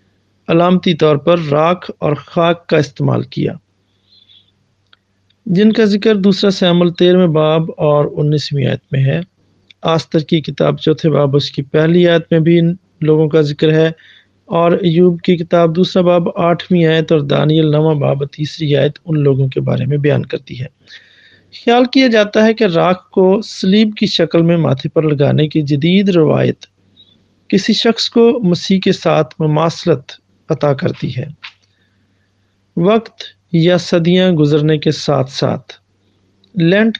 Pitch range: 140-180 Hz